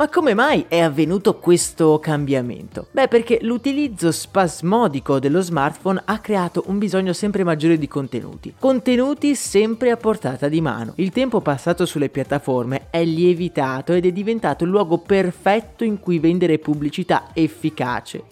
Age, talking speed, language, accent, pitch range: 30-49, 145 wpm, Italian, native, 150-210 Hz